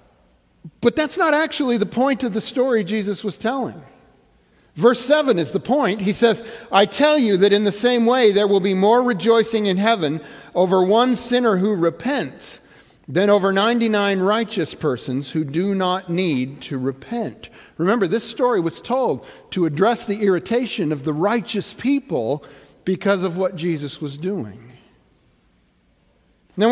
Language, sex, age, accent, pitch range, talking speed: English, male, 50-69, American, 180-235 Hz, 155 wpm